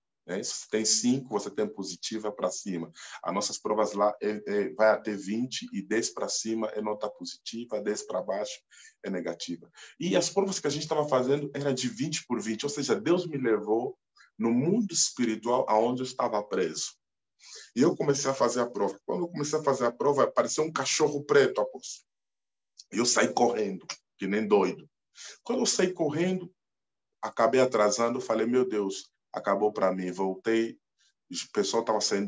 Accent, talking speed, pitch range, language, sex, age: Brazilian, 180 wpm, 100-135 Hz, Portuguese, male, 20-39